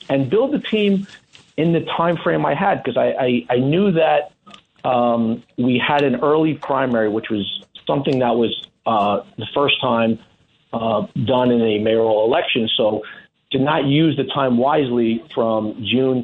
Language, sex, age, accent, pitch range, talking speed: English, male, 40-59, American, 110-130 Hz, 170 wpm